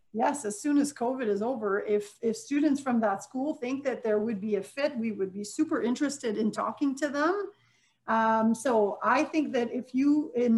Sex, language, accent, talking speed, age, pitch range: female, English, American, 210 wpm, 40-59, 220-285 Hz